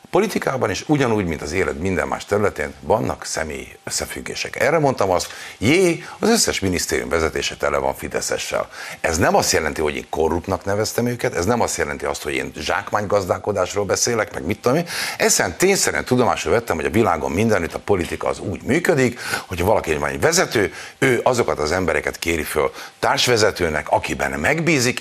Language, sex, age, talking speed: Hungarian, male, 50-69, 175 wpm